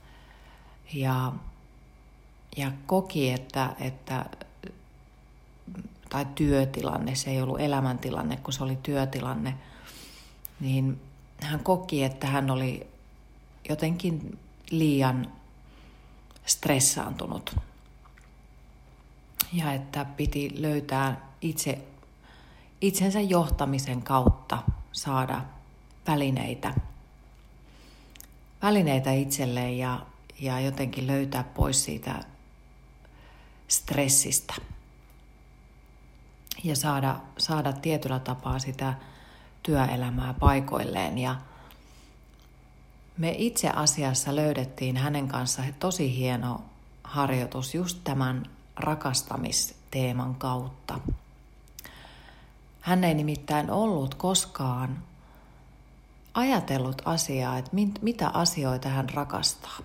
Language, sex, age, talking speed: Finnish, female, 40-59, 75 wpm